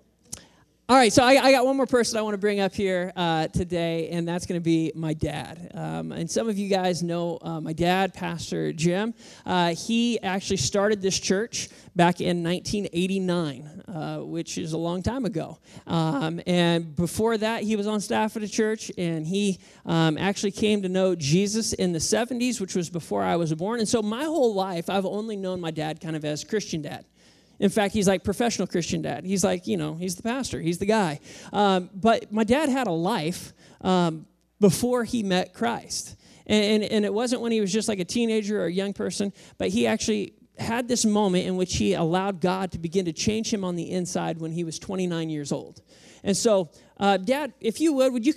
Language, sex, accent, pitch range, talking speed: English, male, American, 170-220 Hz, 215 wpm